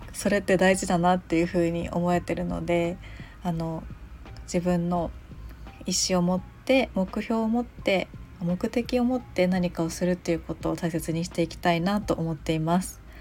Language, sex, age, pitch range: Japanese, female, 20-39, 170-195 Hz